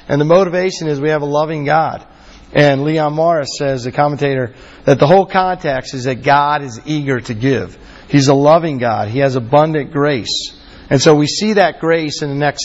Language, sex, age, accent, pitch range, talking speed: English, male, 40-59, American, 130-160 Hz, 205 wpm